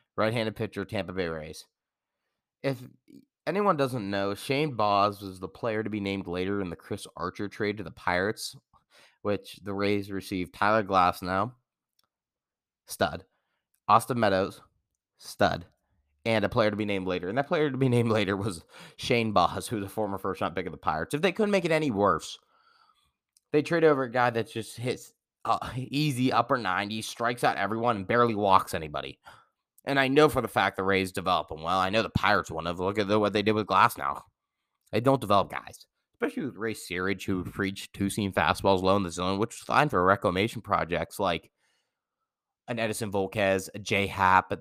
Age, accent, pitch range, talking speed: 20-39, American, 95-120 Hz, 190 wpm